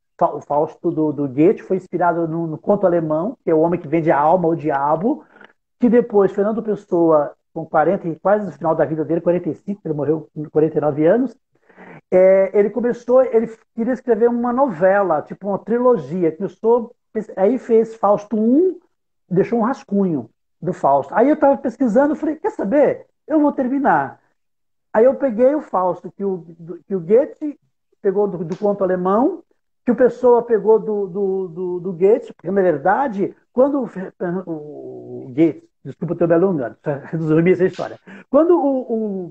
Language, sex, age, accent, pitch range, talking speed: Portuguese, male, 60-79, Brazilian, 170-235 Hz, 175 wpm